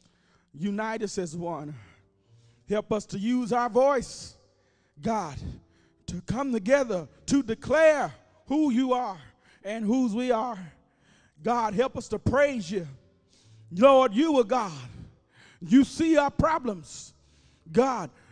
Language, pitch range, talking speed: English, 195-315 Hz, 125 wpm